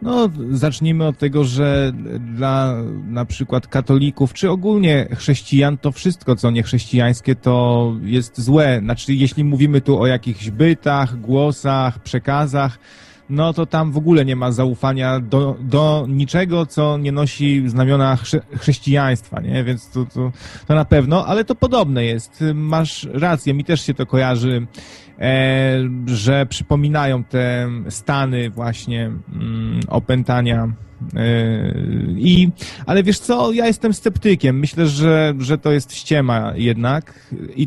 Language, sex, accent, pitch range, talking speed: Polish, male, native, 125-150 Hz, 130 wpm